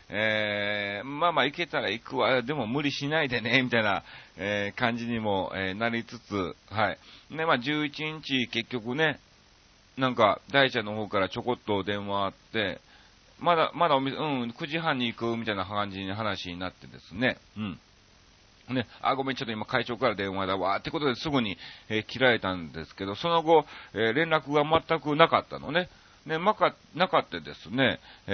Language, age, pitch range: Japanese, 40-59, 100-145 Hz